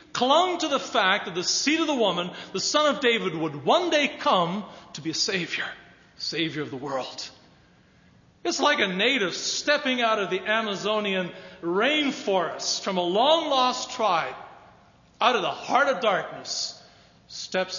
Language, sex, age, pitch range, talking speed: English, male, 40-59, 165-235 Hz, 160 wpm